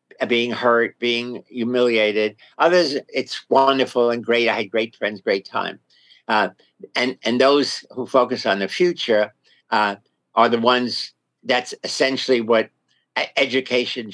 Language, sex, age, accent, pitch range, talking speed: English, male, 50-69, American, 105-130 Hz, 135 wpm